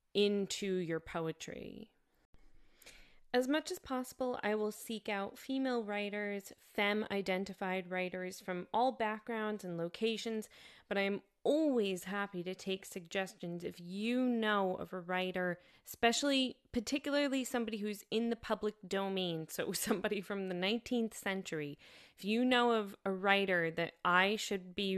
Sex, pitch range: female, 175-225 Hz